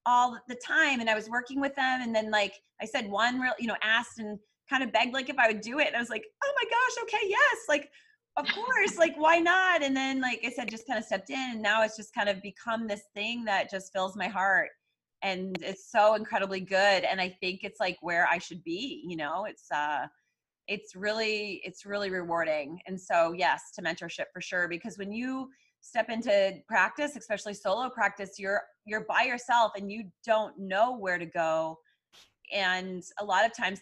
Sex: female